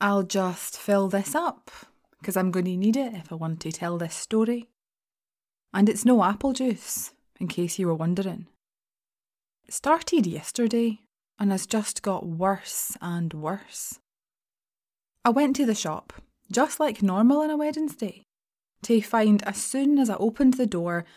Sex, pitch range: female, 180-240 Hz